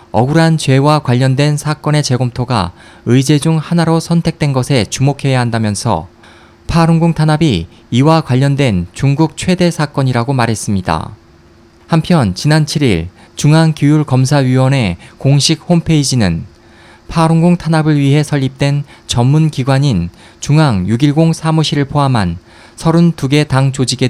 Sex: male